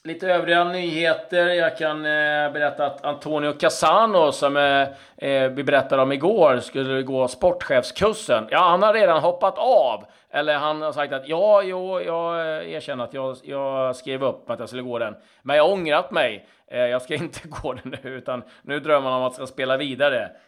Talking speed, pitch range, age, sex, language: 195 wpm, 120-160 Hz, 40-59, male, Swedish